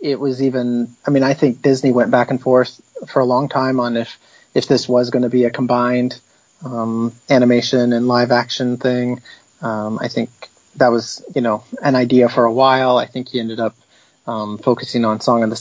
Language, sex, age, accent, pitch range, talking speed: English, male, 30-49, American, 115-135 Hz, 210 wpm